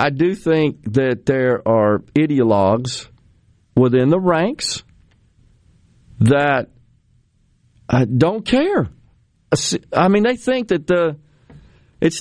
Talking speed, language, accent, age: 95 wpm, English, American, 50-69